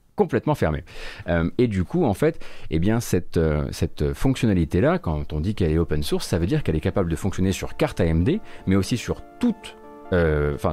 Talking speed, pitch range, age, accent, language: 220 wpm, 80-110 Hz, 30-49, French, French